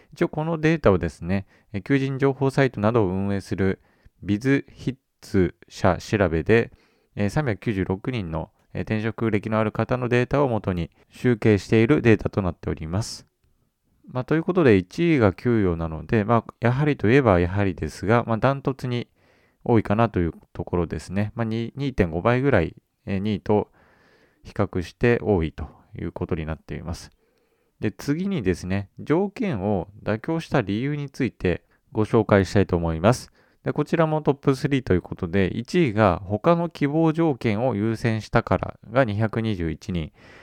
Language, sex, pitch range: Japanese, male, 95-135 Hz